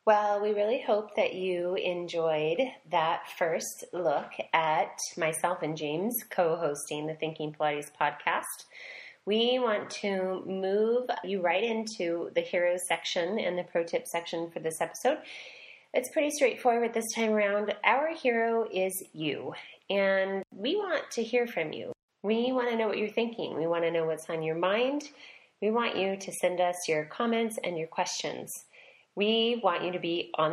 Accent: American